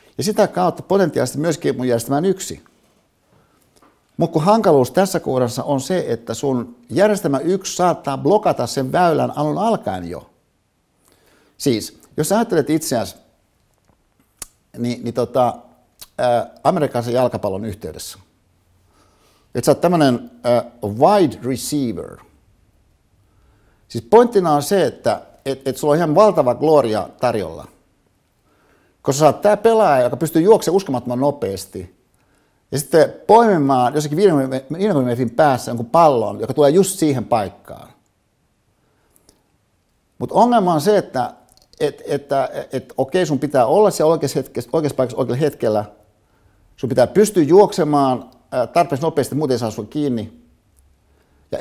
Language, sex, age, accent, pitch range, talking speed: Finnish, male, 60-79, native, 110-160 Hz, 135 wpm